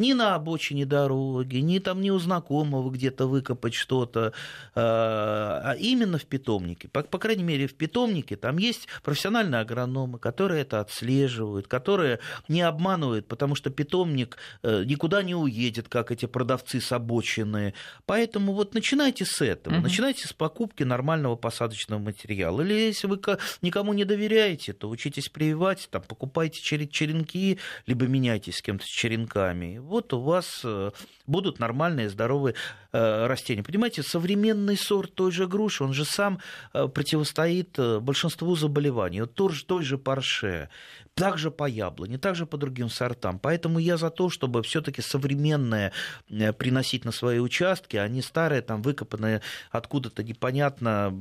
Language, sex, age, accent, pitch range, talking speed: Russian, male, 30-49, native, 115-180 Hz, 145 wpm